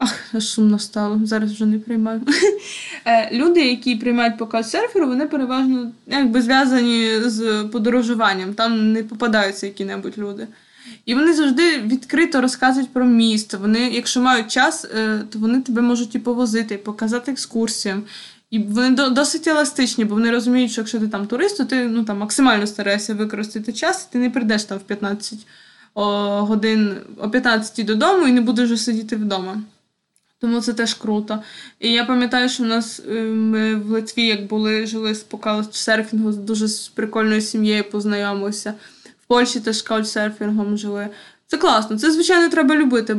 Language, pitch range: Ukrainian, 215-255 Hz